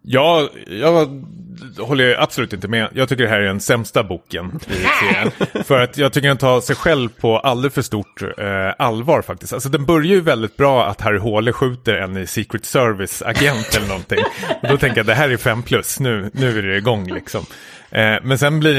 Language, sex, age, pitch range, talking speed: Swedish, male, 30-49, 100-130 Hz, 200 wpm